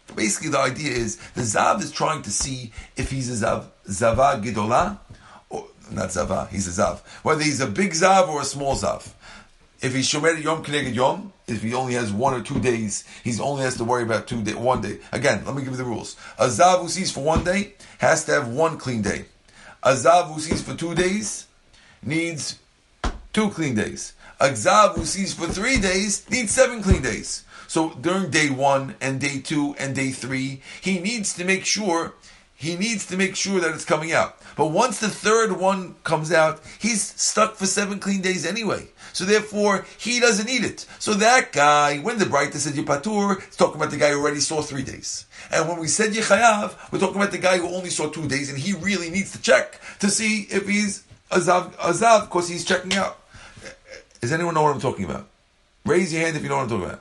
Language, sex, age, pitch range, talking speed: English, male, 50-69, 135-195 Hz, 220 wpm